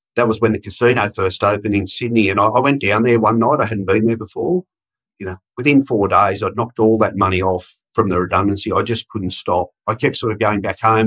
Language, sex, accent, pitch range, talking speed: English, male, Australian, 95-115 Hz, 250 wpm